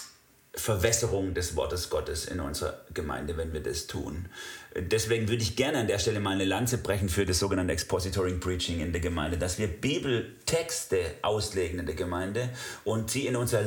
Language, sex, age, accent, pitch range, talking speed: German, male, 40-59, German, 90-120 Hz, 180 wpm